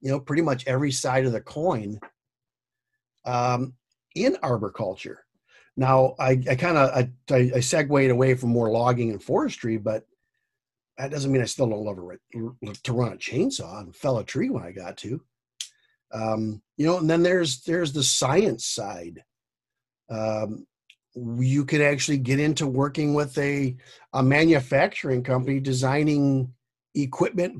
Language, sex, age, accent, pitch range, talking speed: English, male, 50-69, American, 120-155 Hz, 155 wpm